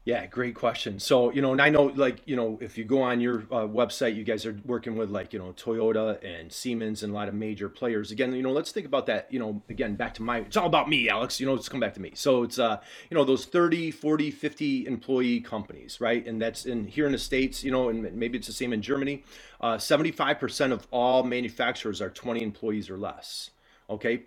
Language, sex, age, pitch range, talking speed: English, male, 30-49, 115-140 Hz, 245 wpm